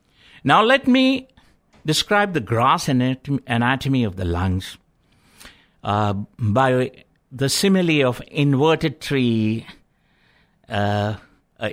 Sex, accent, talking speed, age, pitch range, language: male, Indian, 90 wpm, 60-79, 110-155 Hz, English